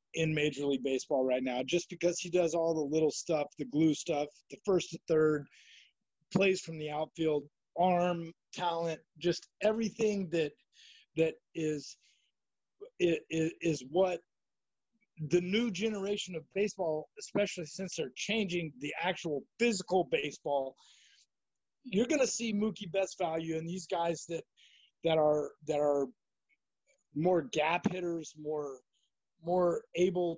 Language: English